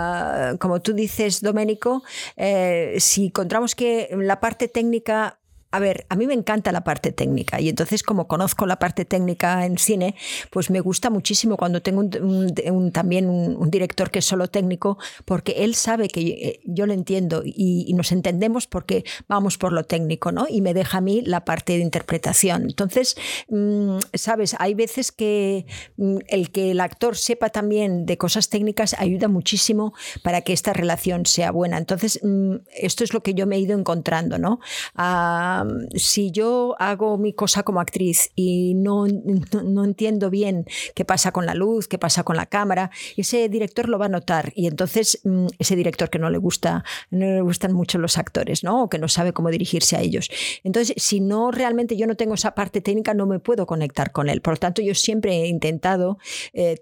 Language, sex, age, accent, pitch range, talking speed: Spanish, female, 50-69, Spanish, 175-215 Hz, 195 wpm